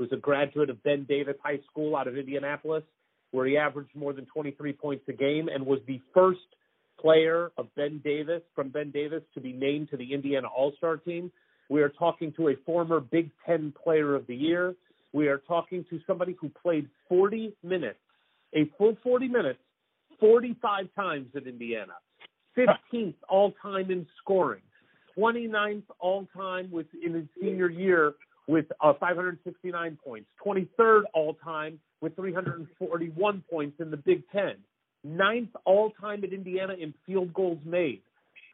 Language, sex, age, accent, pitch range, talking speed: English, male, 40-59, American, 150-200 Hz, 155 wpm